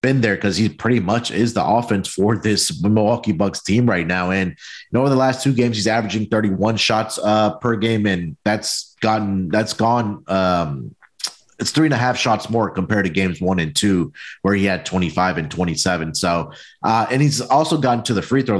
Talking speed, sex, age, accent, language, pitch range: 215 wpm, male, 30-49, American, English, 95-115 Hz